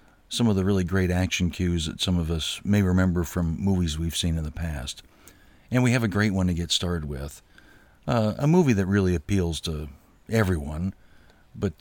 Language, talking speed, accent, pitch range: English, 200 wpm, American, 90-110 Hz